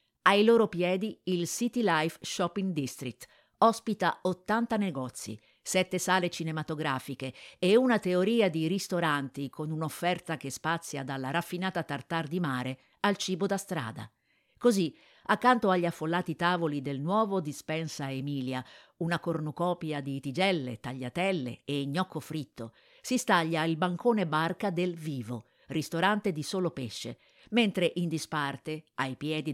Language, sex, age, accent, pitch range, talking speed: Italian, female, 50-69, native, 140-190 Hz, 130 wpm